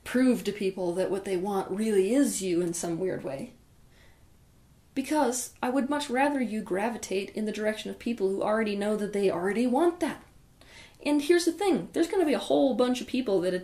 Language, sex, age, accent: English, female, 30-49, American